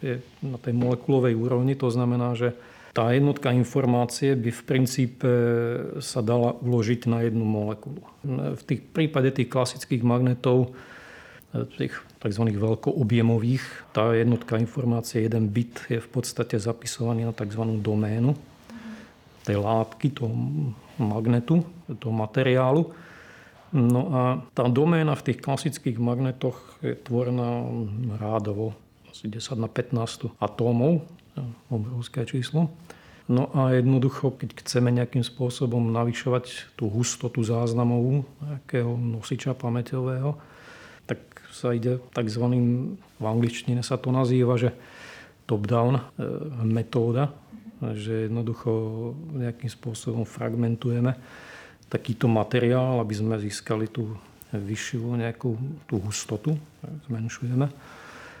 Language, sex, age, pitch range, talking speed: Slovak, male, 50-69, 115-130 Hz, 110 wpm